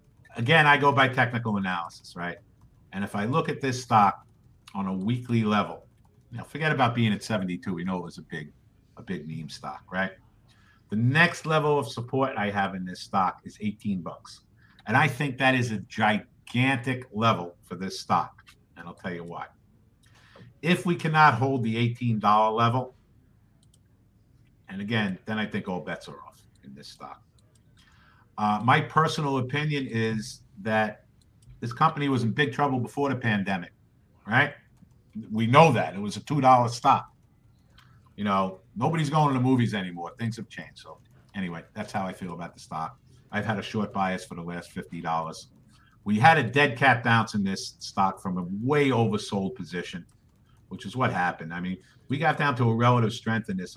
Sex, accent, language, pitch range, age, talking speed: male, American, English, 100-130 Hz, 50-69, 185 wpm